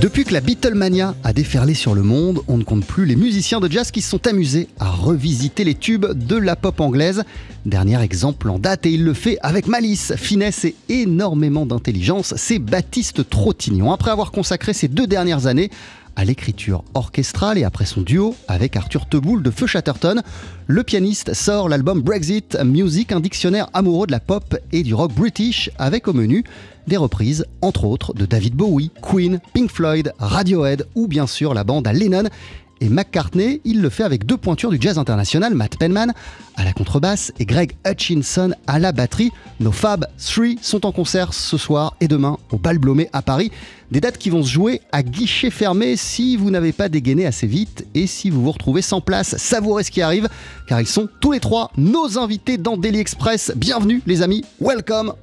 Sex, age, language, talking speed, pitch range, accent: male, 30-49, French, 195 wpm, 135-205 Hz, French